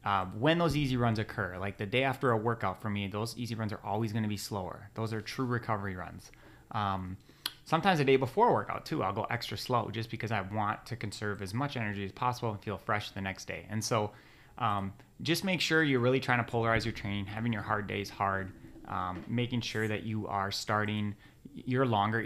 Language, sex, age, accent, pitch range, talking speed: English, male, 20-39, American, 100-115 Hz, 225 wpm